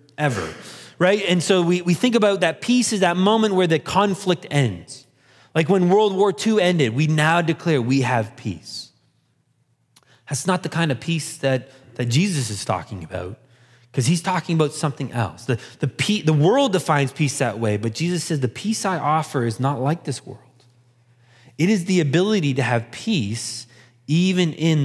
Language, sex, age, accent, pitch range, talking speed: English, male, 30-49, American, 125-180 Hz, 185 wpm